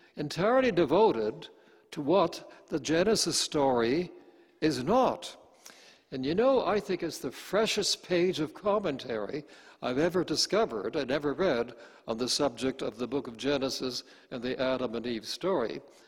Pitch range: 130-180 Hz